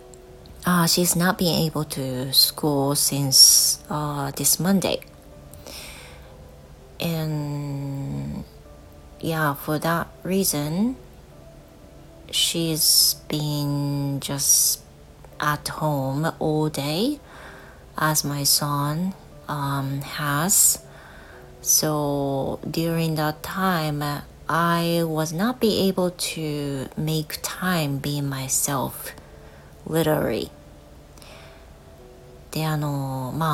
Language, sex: Japanese, female